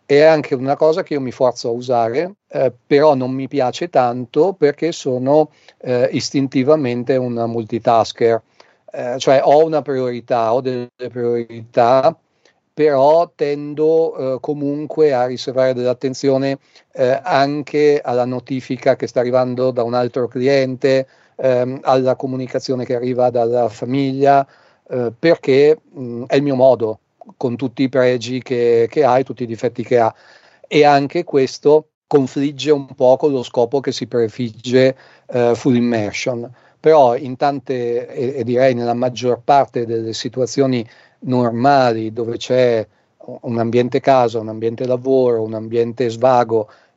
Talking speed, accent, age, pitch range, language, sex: 145 wpm, native, 50-69, 120-140 Hz, Italian, male